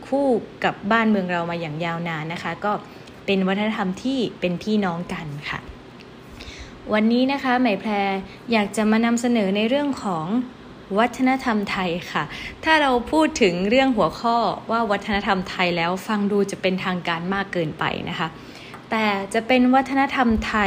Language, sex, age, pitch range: Thai, female, 20-39, 185-230 Hz